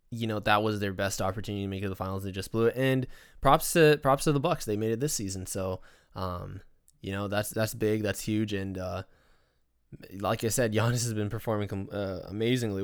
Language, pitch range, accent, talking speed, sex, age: English, 100-120 Hz, American, 230 wpm, male, 20-39